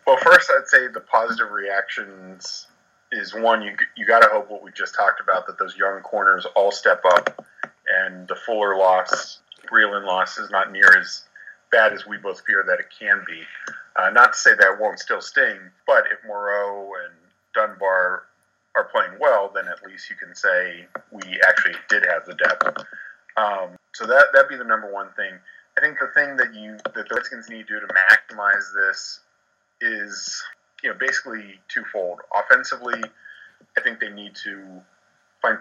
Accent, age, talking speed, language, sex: American, 40-59, 185 wpm, English, male